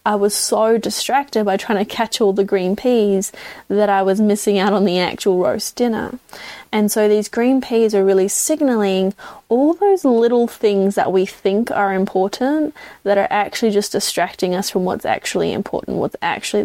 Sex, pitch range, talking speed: female, 195-220 Hz, 185 wpm